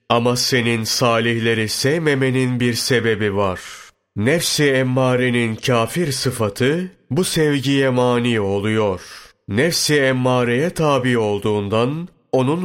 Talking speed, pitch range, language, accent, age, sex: 95 wpm, 115-135 Hz, Turkish, native, 40-59, male